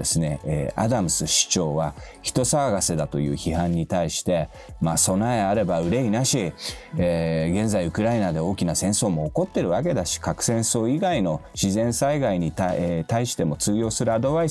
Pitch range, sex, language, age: 80-120 Hz, male, Japanese, 40-59